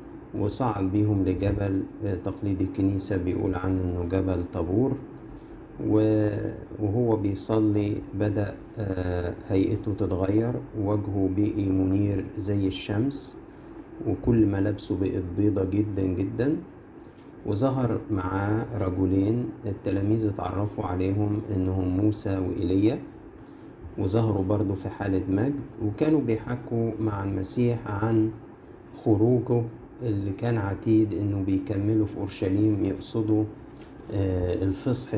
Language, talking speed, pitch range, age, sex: Arabic, 95 wpm, 95-110 Hz, 50-69, male